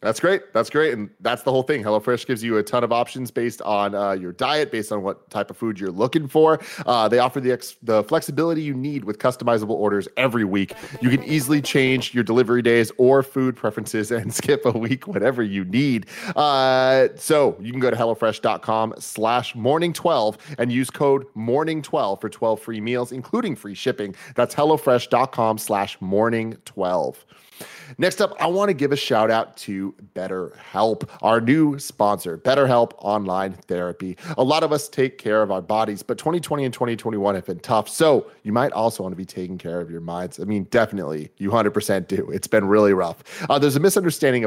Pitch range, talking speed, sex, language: 105-135 Hz, 200 wpm, male, English